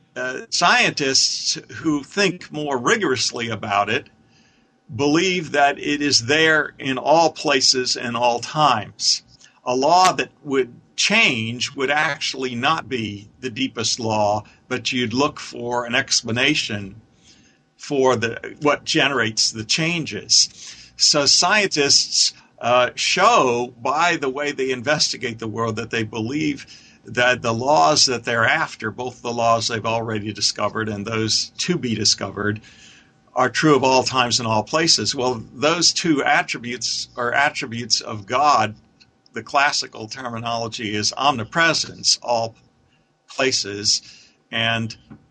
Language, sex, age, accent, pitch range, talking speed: English, male, 50-69, American, 115-145 Hz, 130 wpm